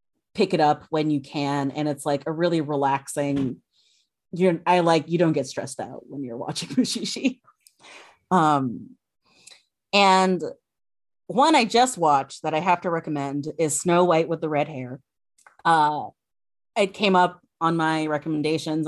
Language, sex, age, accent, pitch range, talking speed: English, female, 30-49, American, 155-215 Hz, 150 wpm